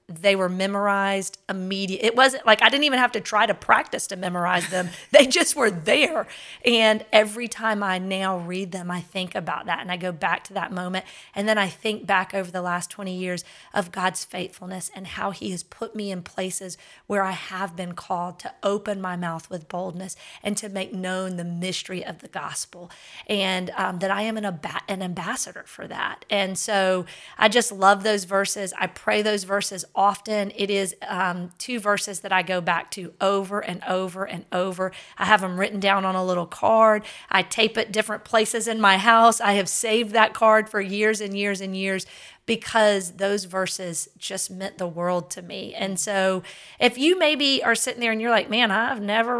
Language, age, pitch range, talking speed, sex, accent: English, 30-49, 185-215 Hz, 205 wpm, female, American